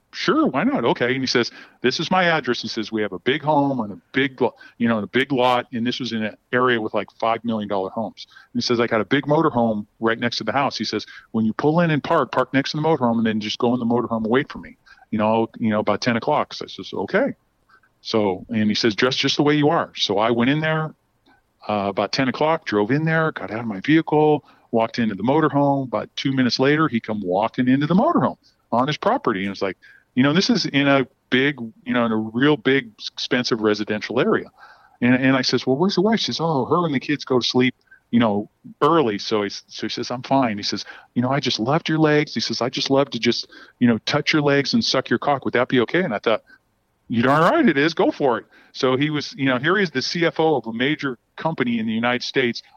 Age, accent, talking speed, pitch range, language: 40-59, American, 270 wpm, 115-150 Hz, English